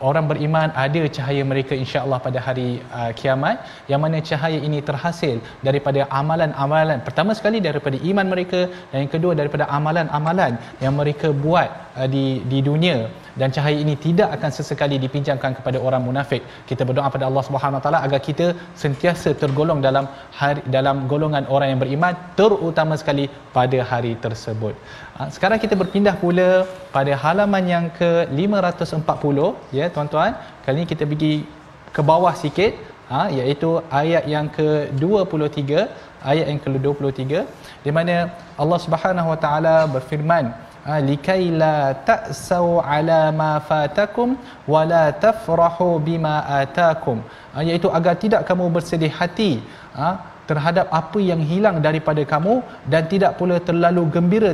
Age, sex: 20-39, male